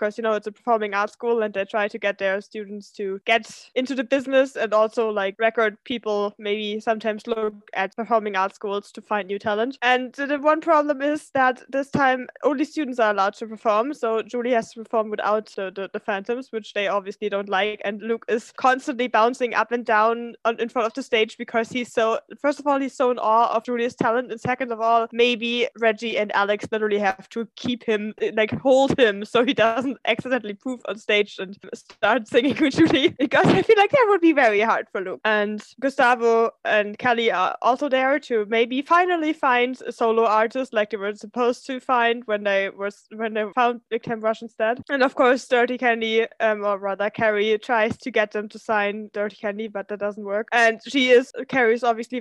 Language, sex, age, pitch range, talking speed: English, female, 20-39, 210-250 Hz, 215 wpm